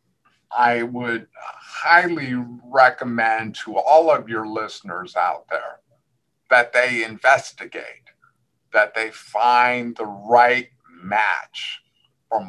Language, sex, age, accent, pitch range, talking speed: English, male, 50-69, American, 110-125 Hz, 100 wpm